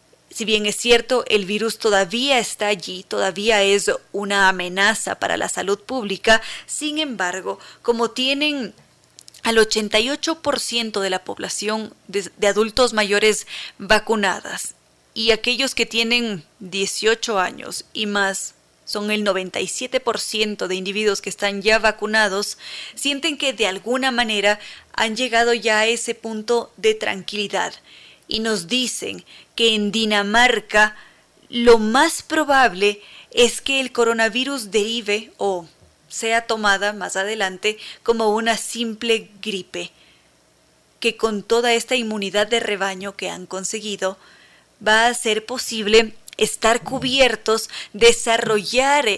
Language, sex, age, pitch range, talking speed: Spanish, female, 30-49, 200-235 Hz, 125 wpm